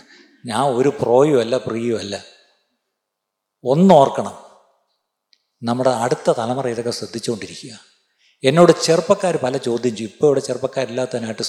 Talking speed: 90 wpm